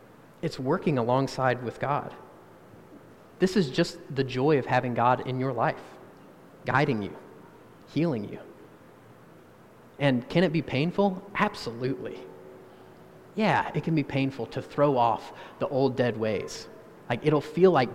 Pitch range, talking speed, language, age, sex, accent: 120-145 Hz, 140 wpm, English, 30-49, male, American